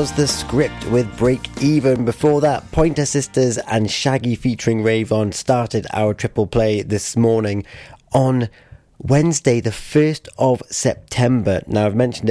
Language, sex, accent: English, male, British